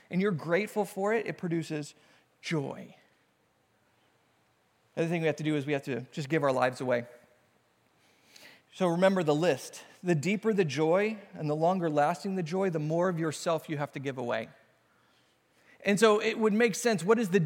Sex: male